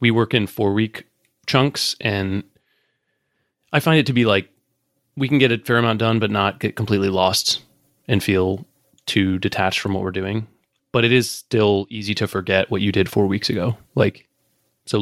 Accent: American